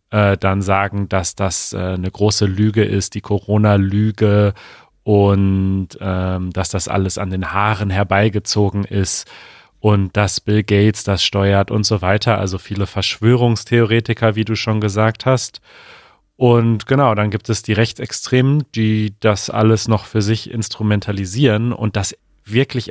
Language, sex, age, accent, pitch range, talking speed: German, male, 30-49, German, 100-120 Hz, 140 wpm